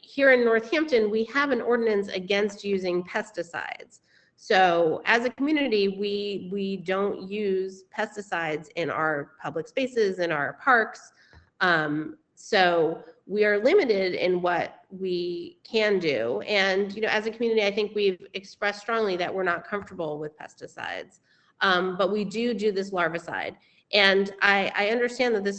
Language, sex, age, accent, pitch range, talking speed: English, female, 30-49, American, 180-215 Hz, 150 wpm